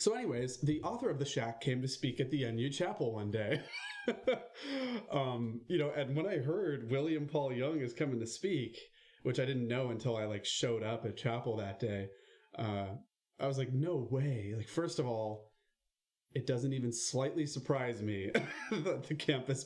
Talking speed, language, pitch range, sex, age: 190 wpm, English, 115-150 Hz, male, 30-49